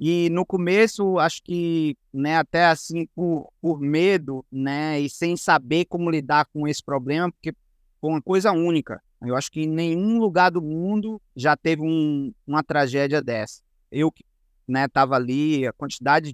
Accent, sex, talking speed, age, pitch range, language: Brazilian, male, 165 wpm, 20-39, 145-195 Hz, Portuguese